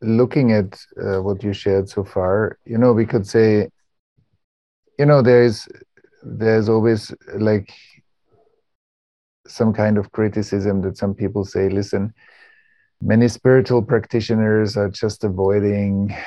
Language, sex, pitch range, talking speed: English, male, 95-110 Hz, 125 wpm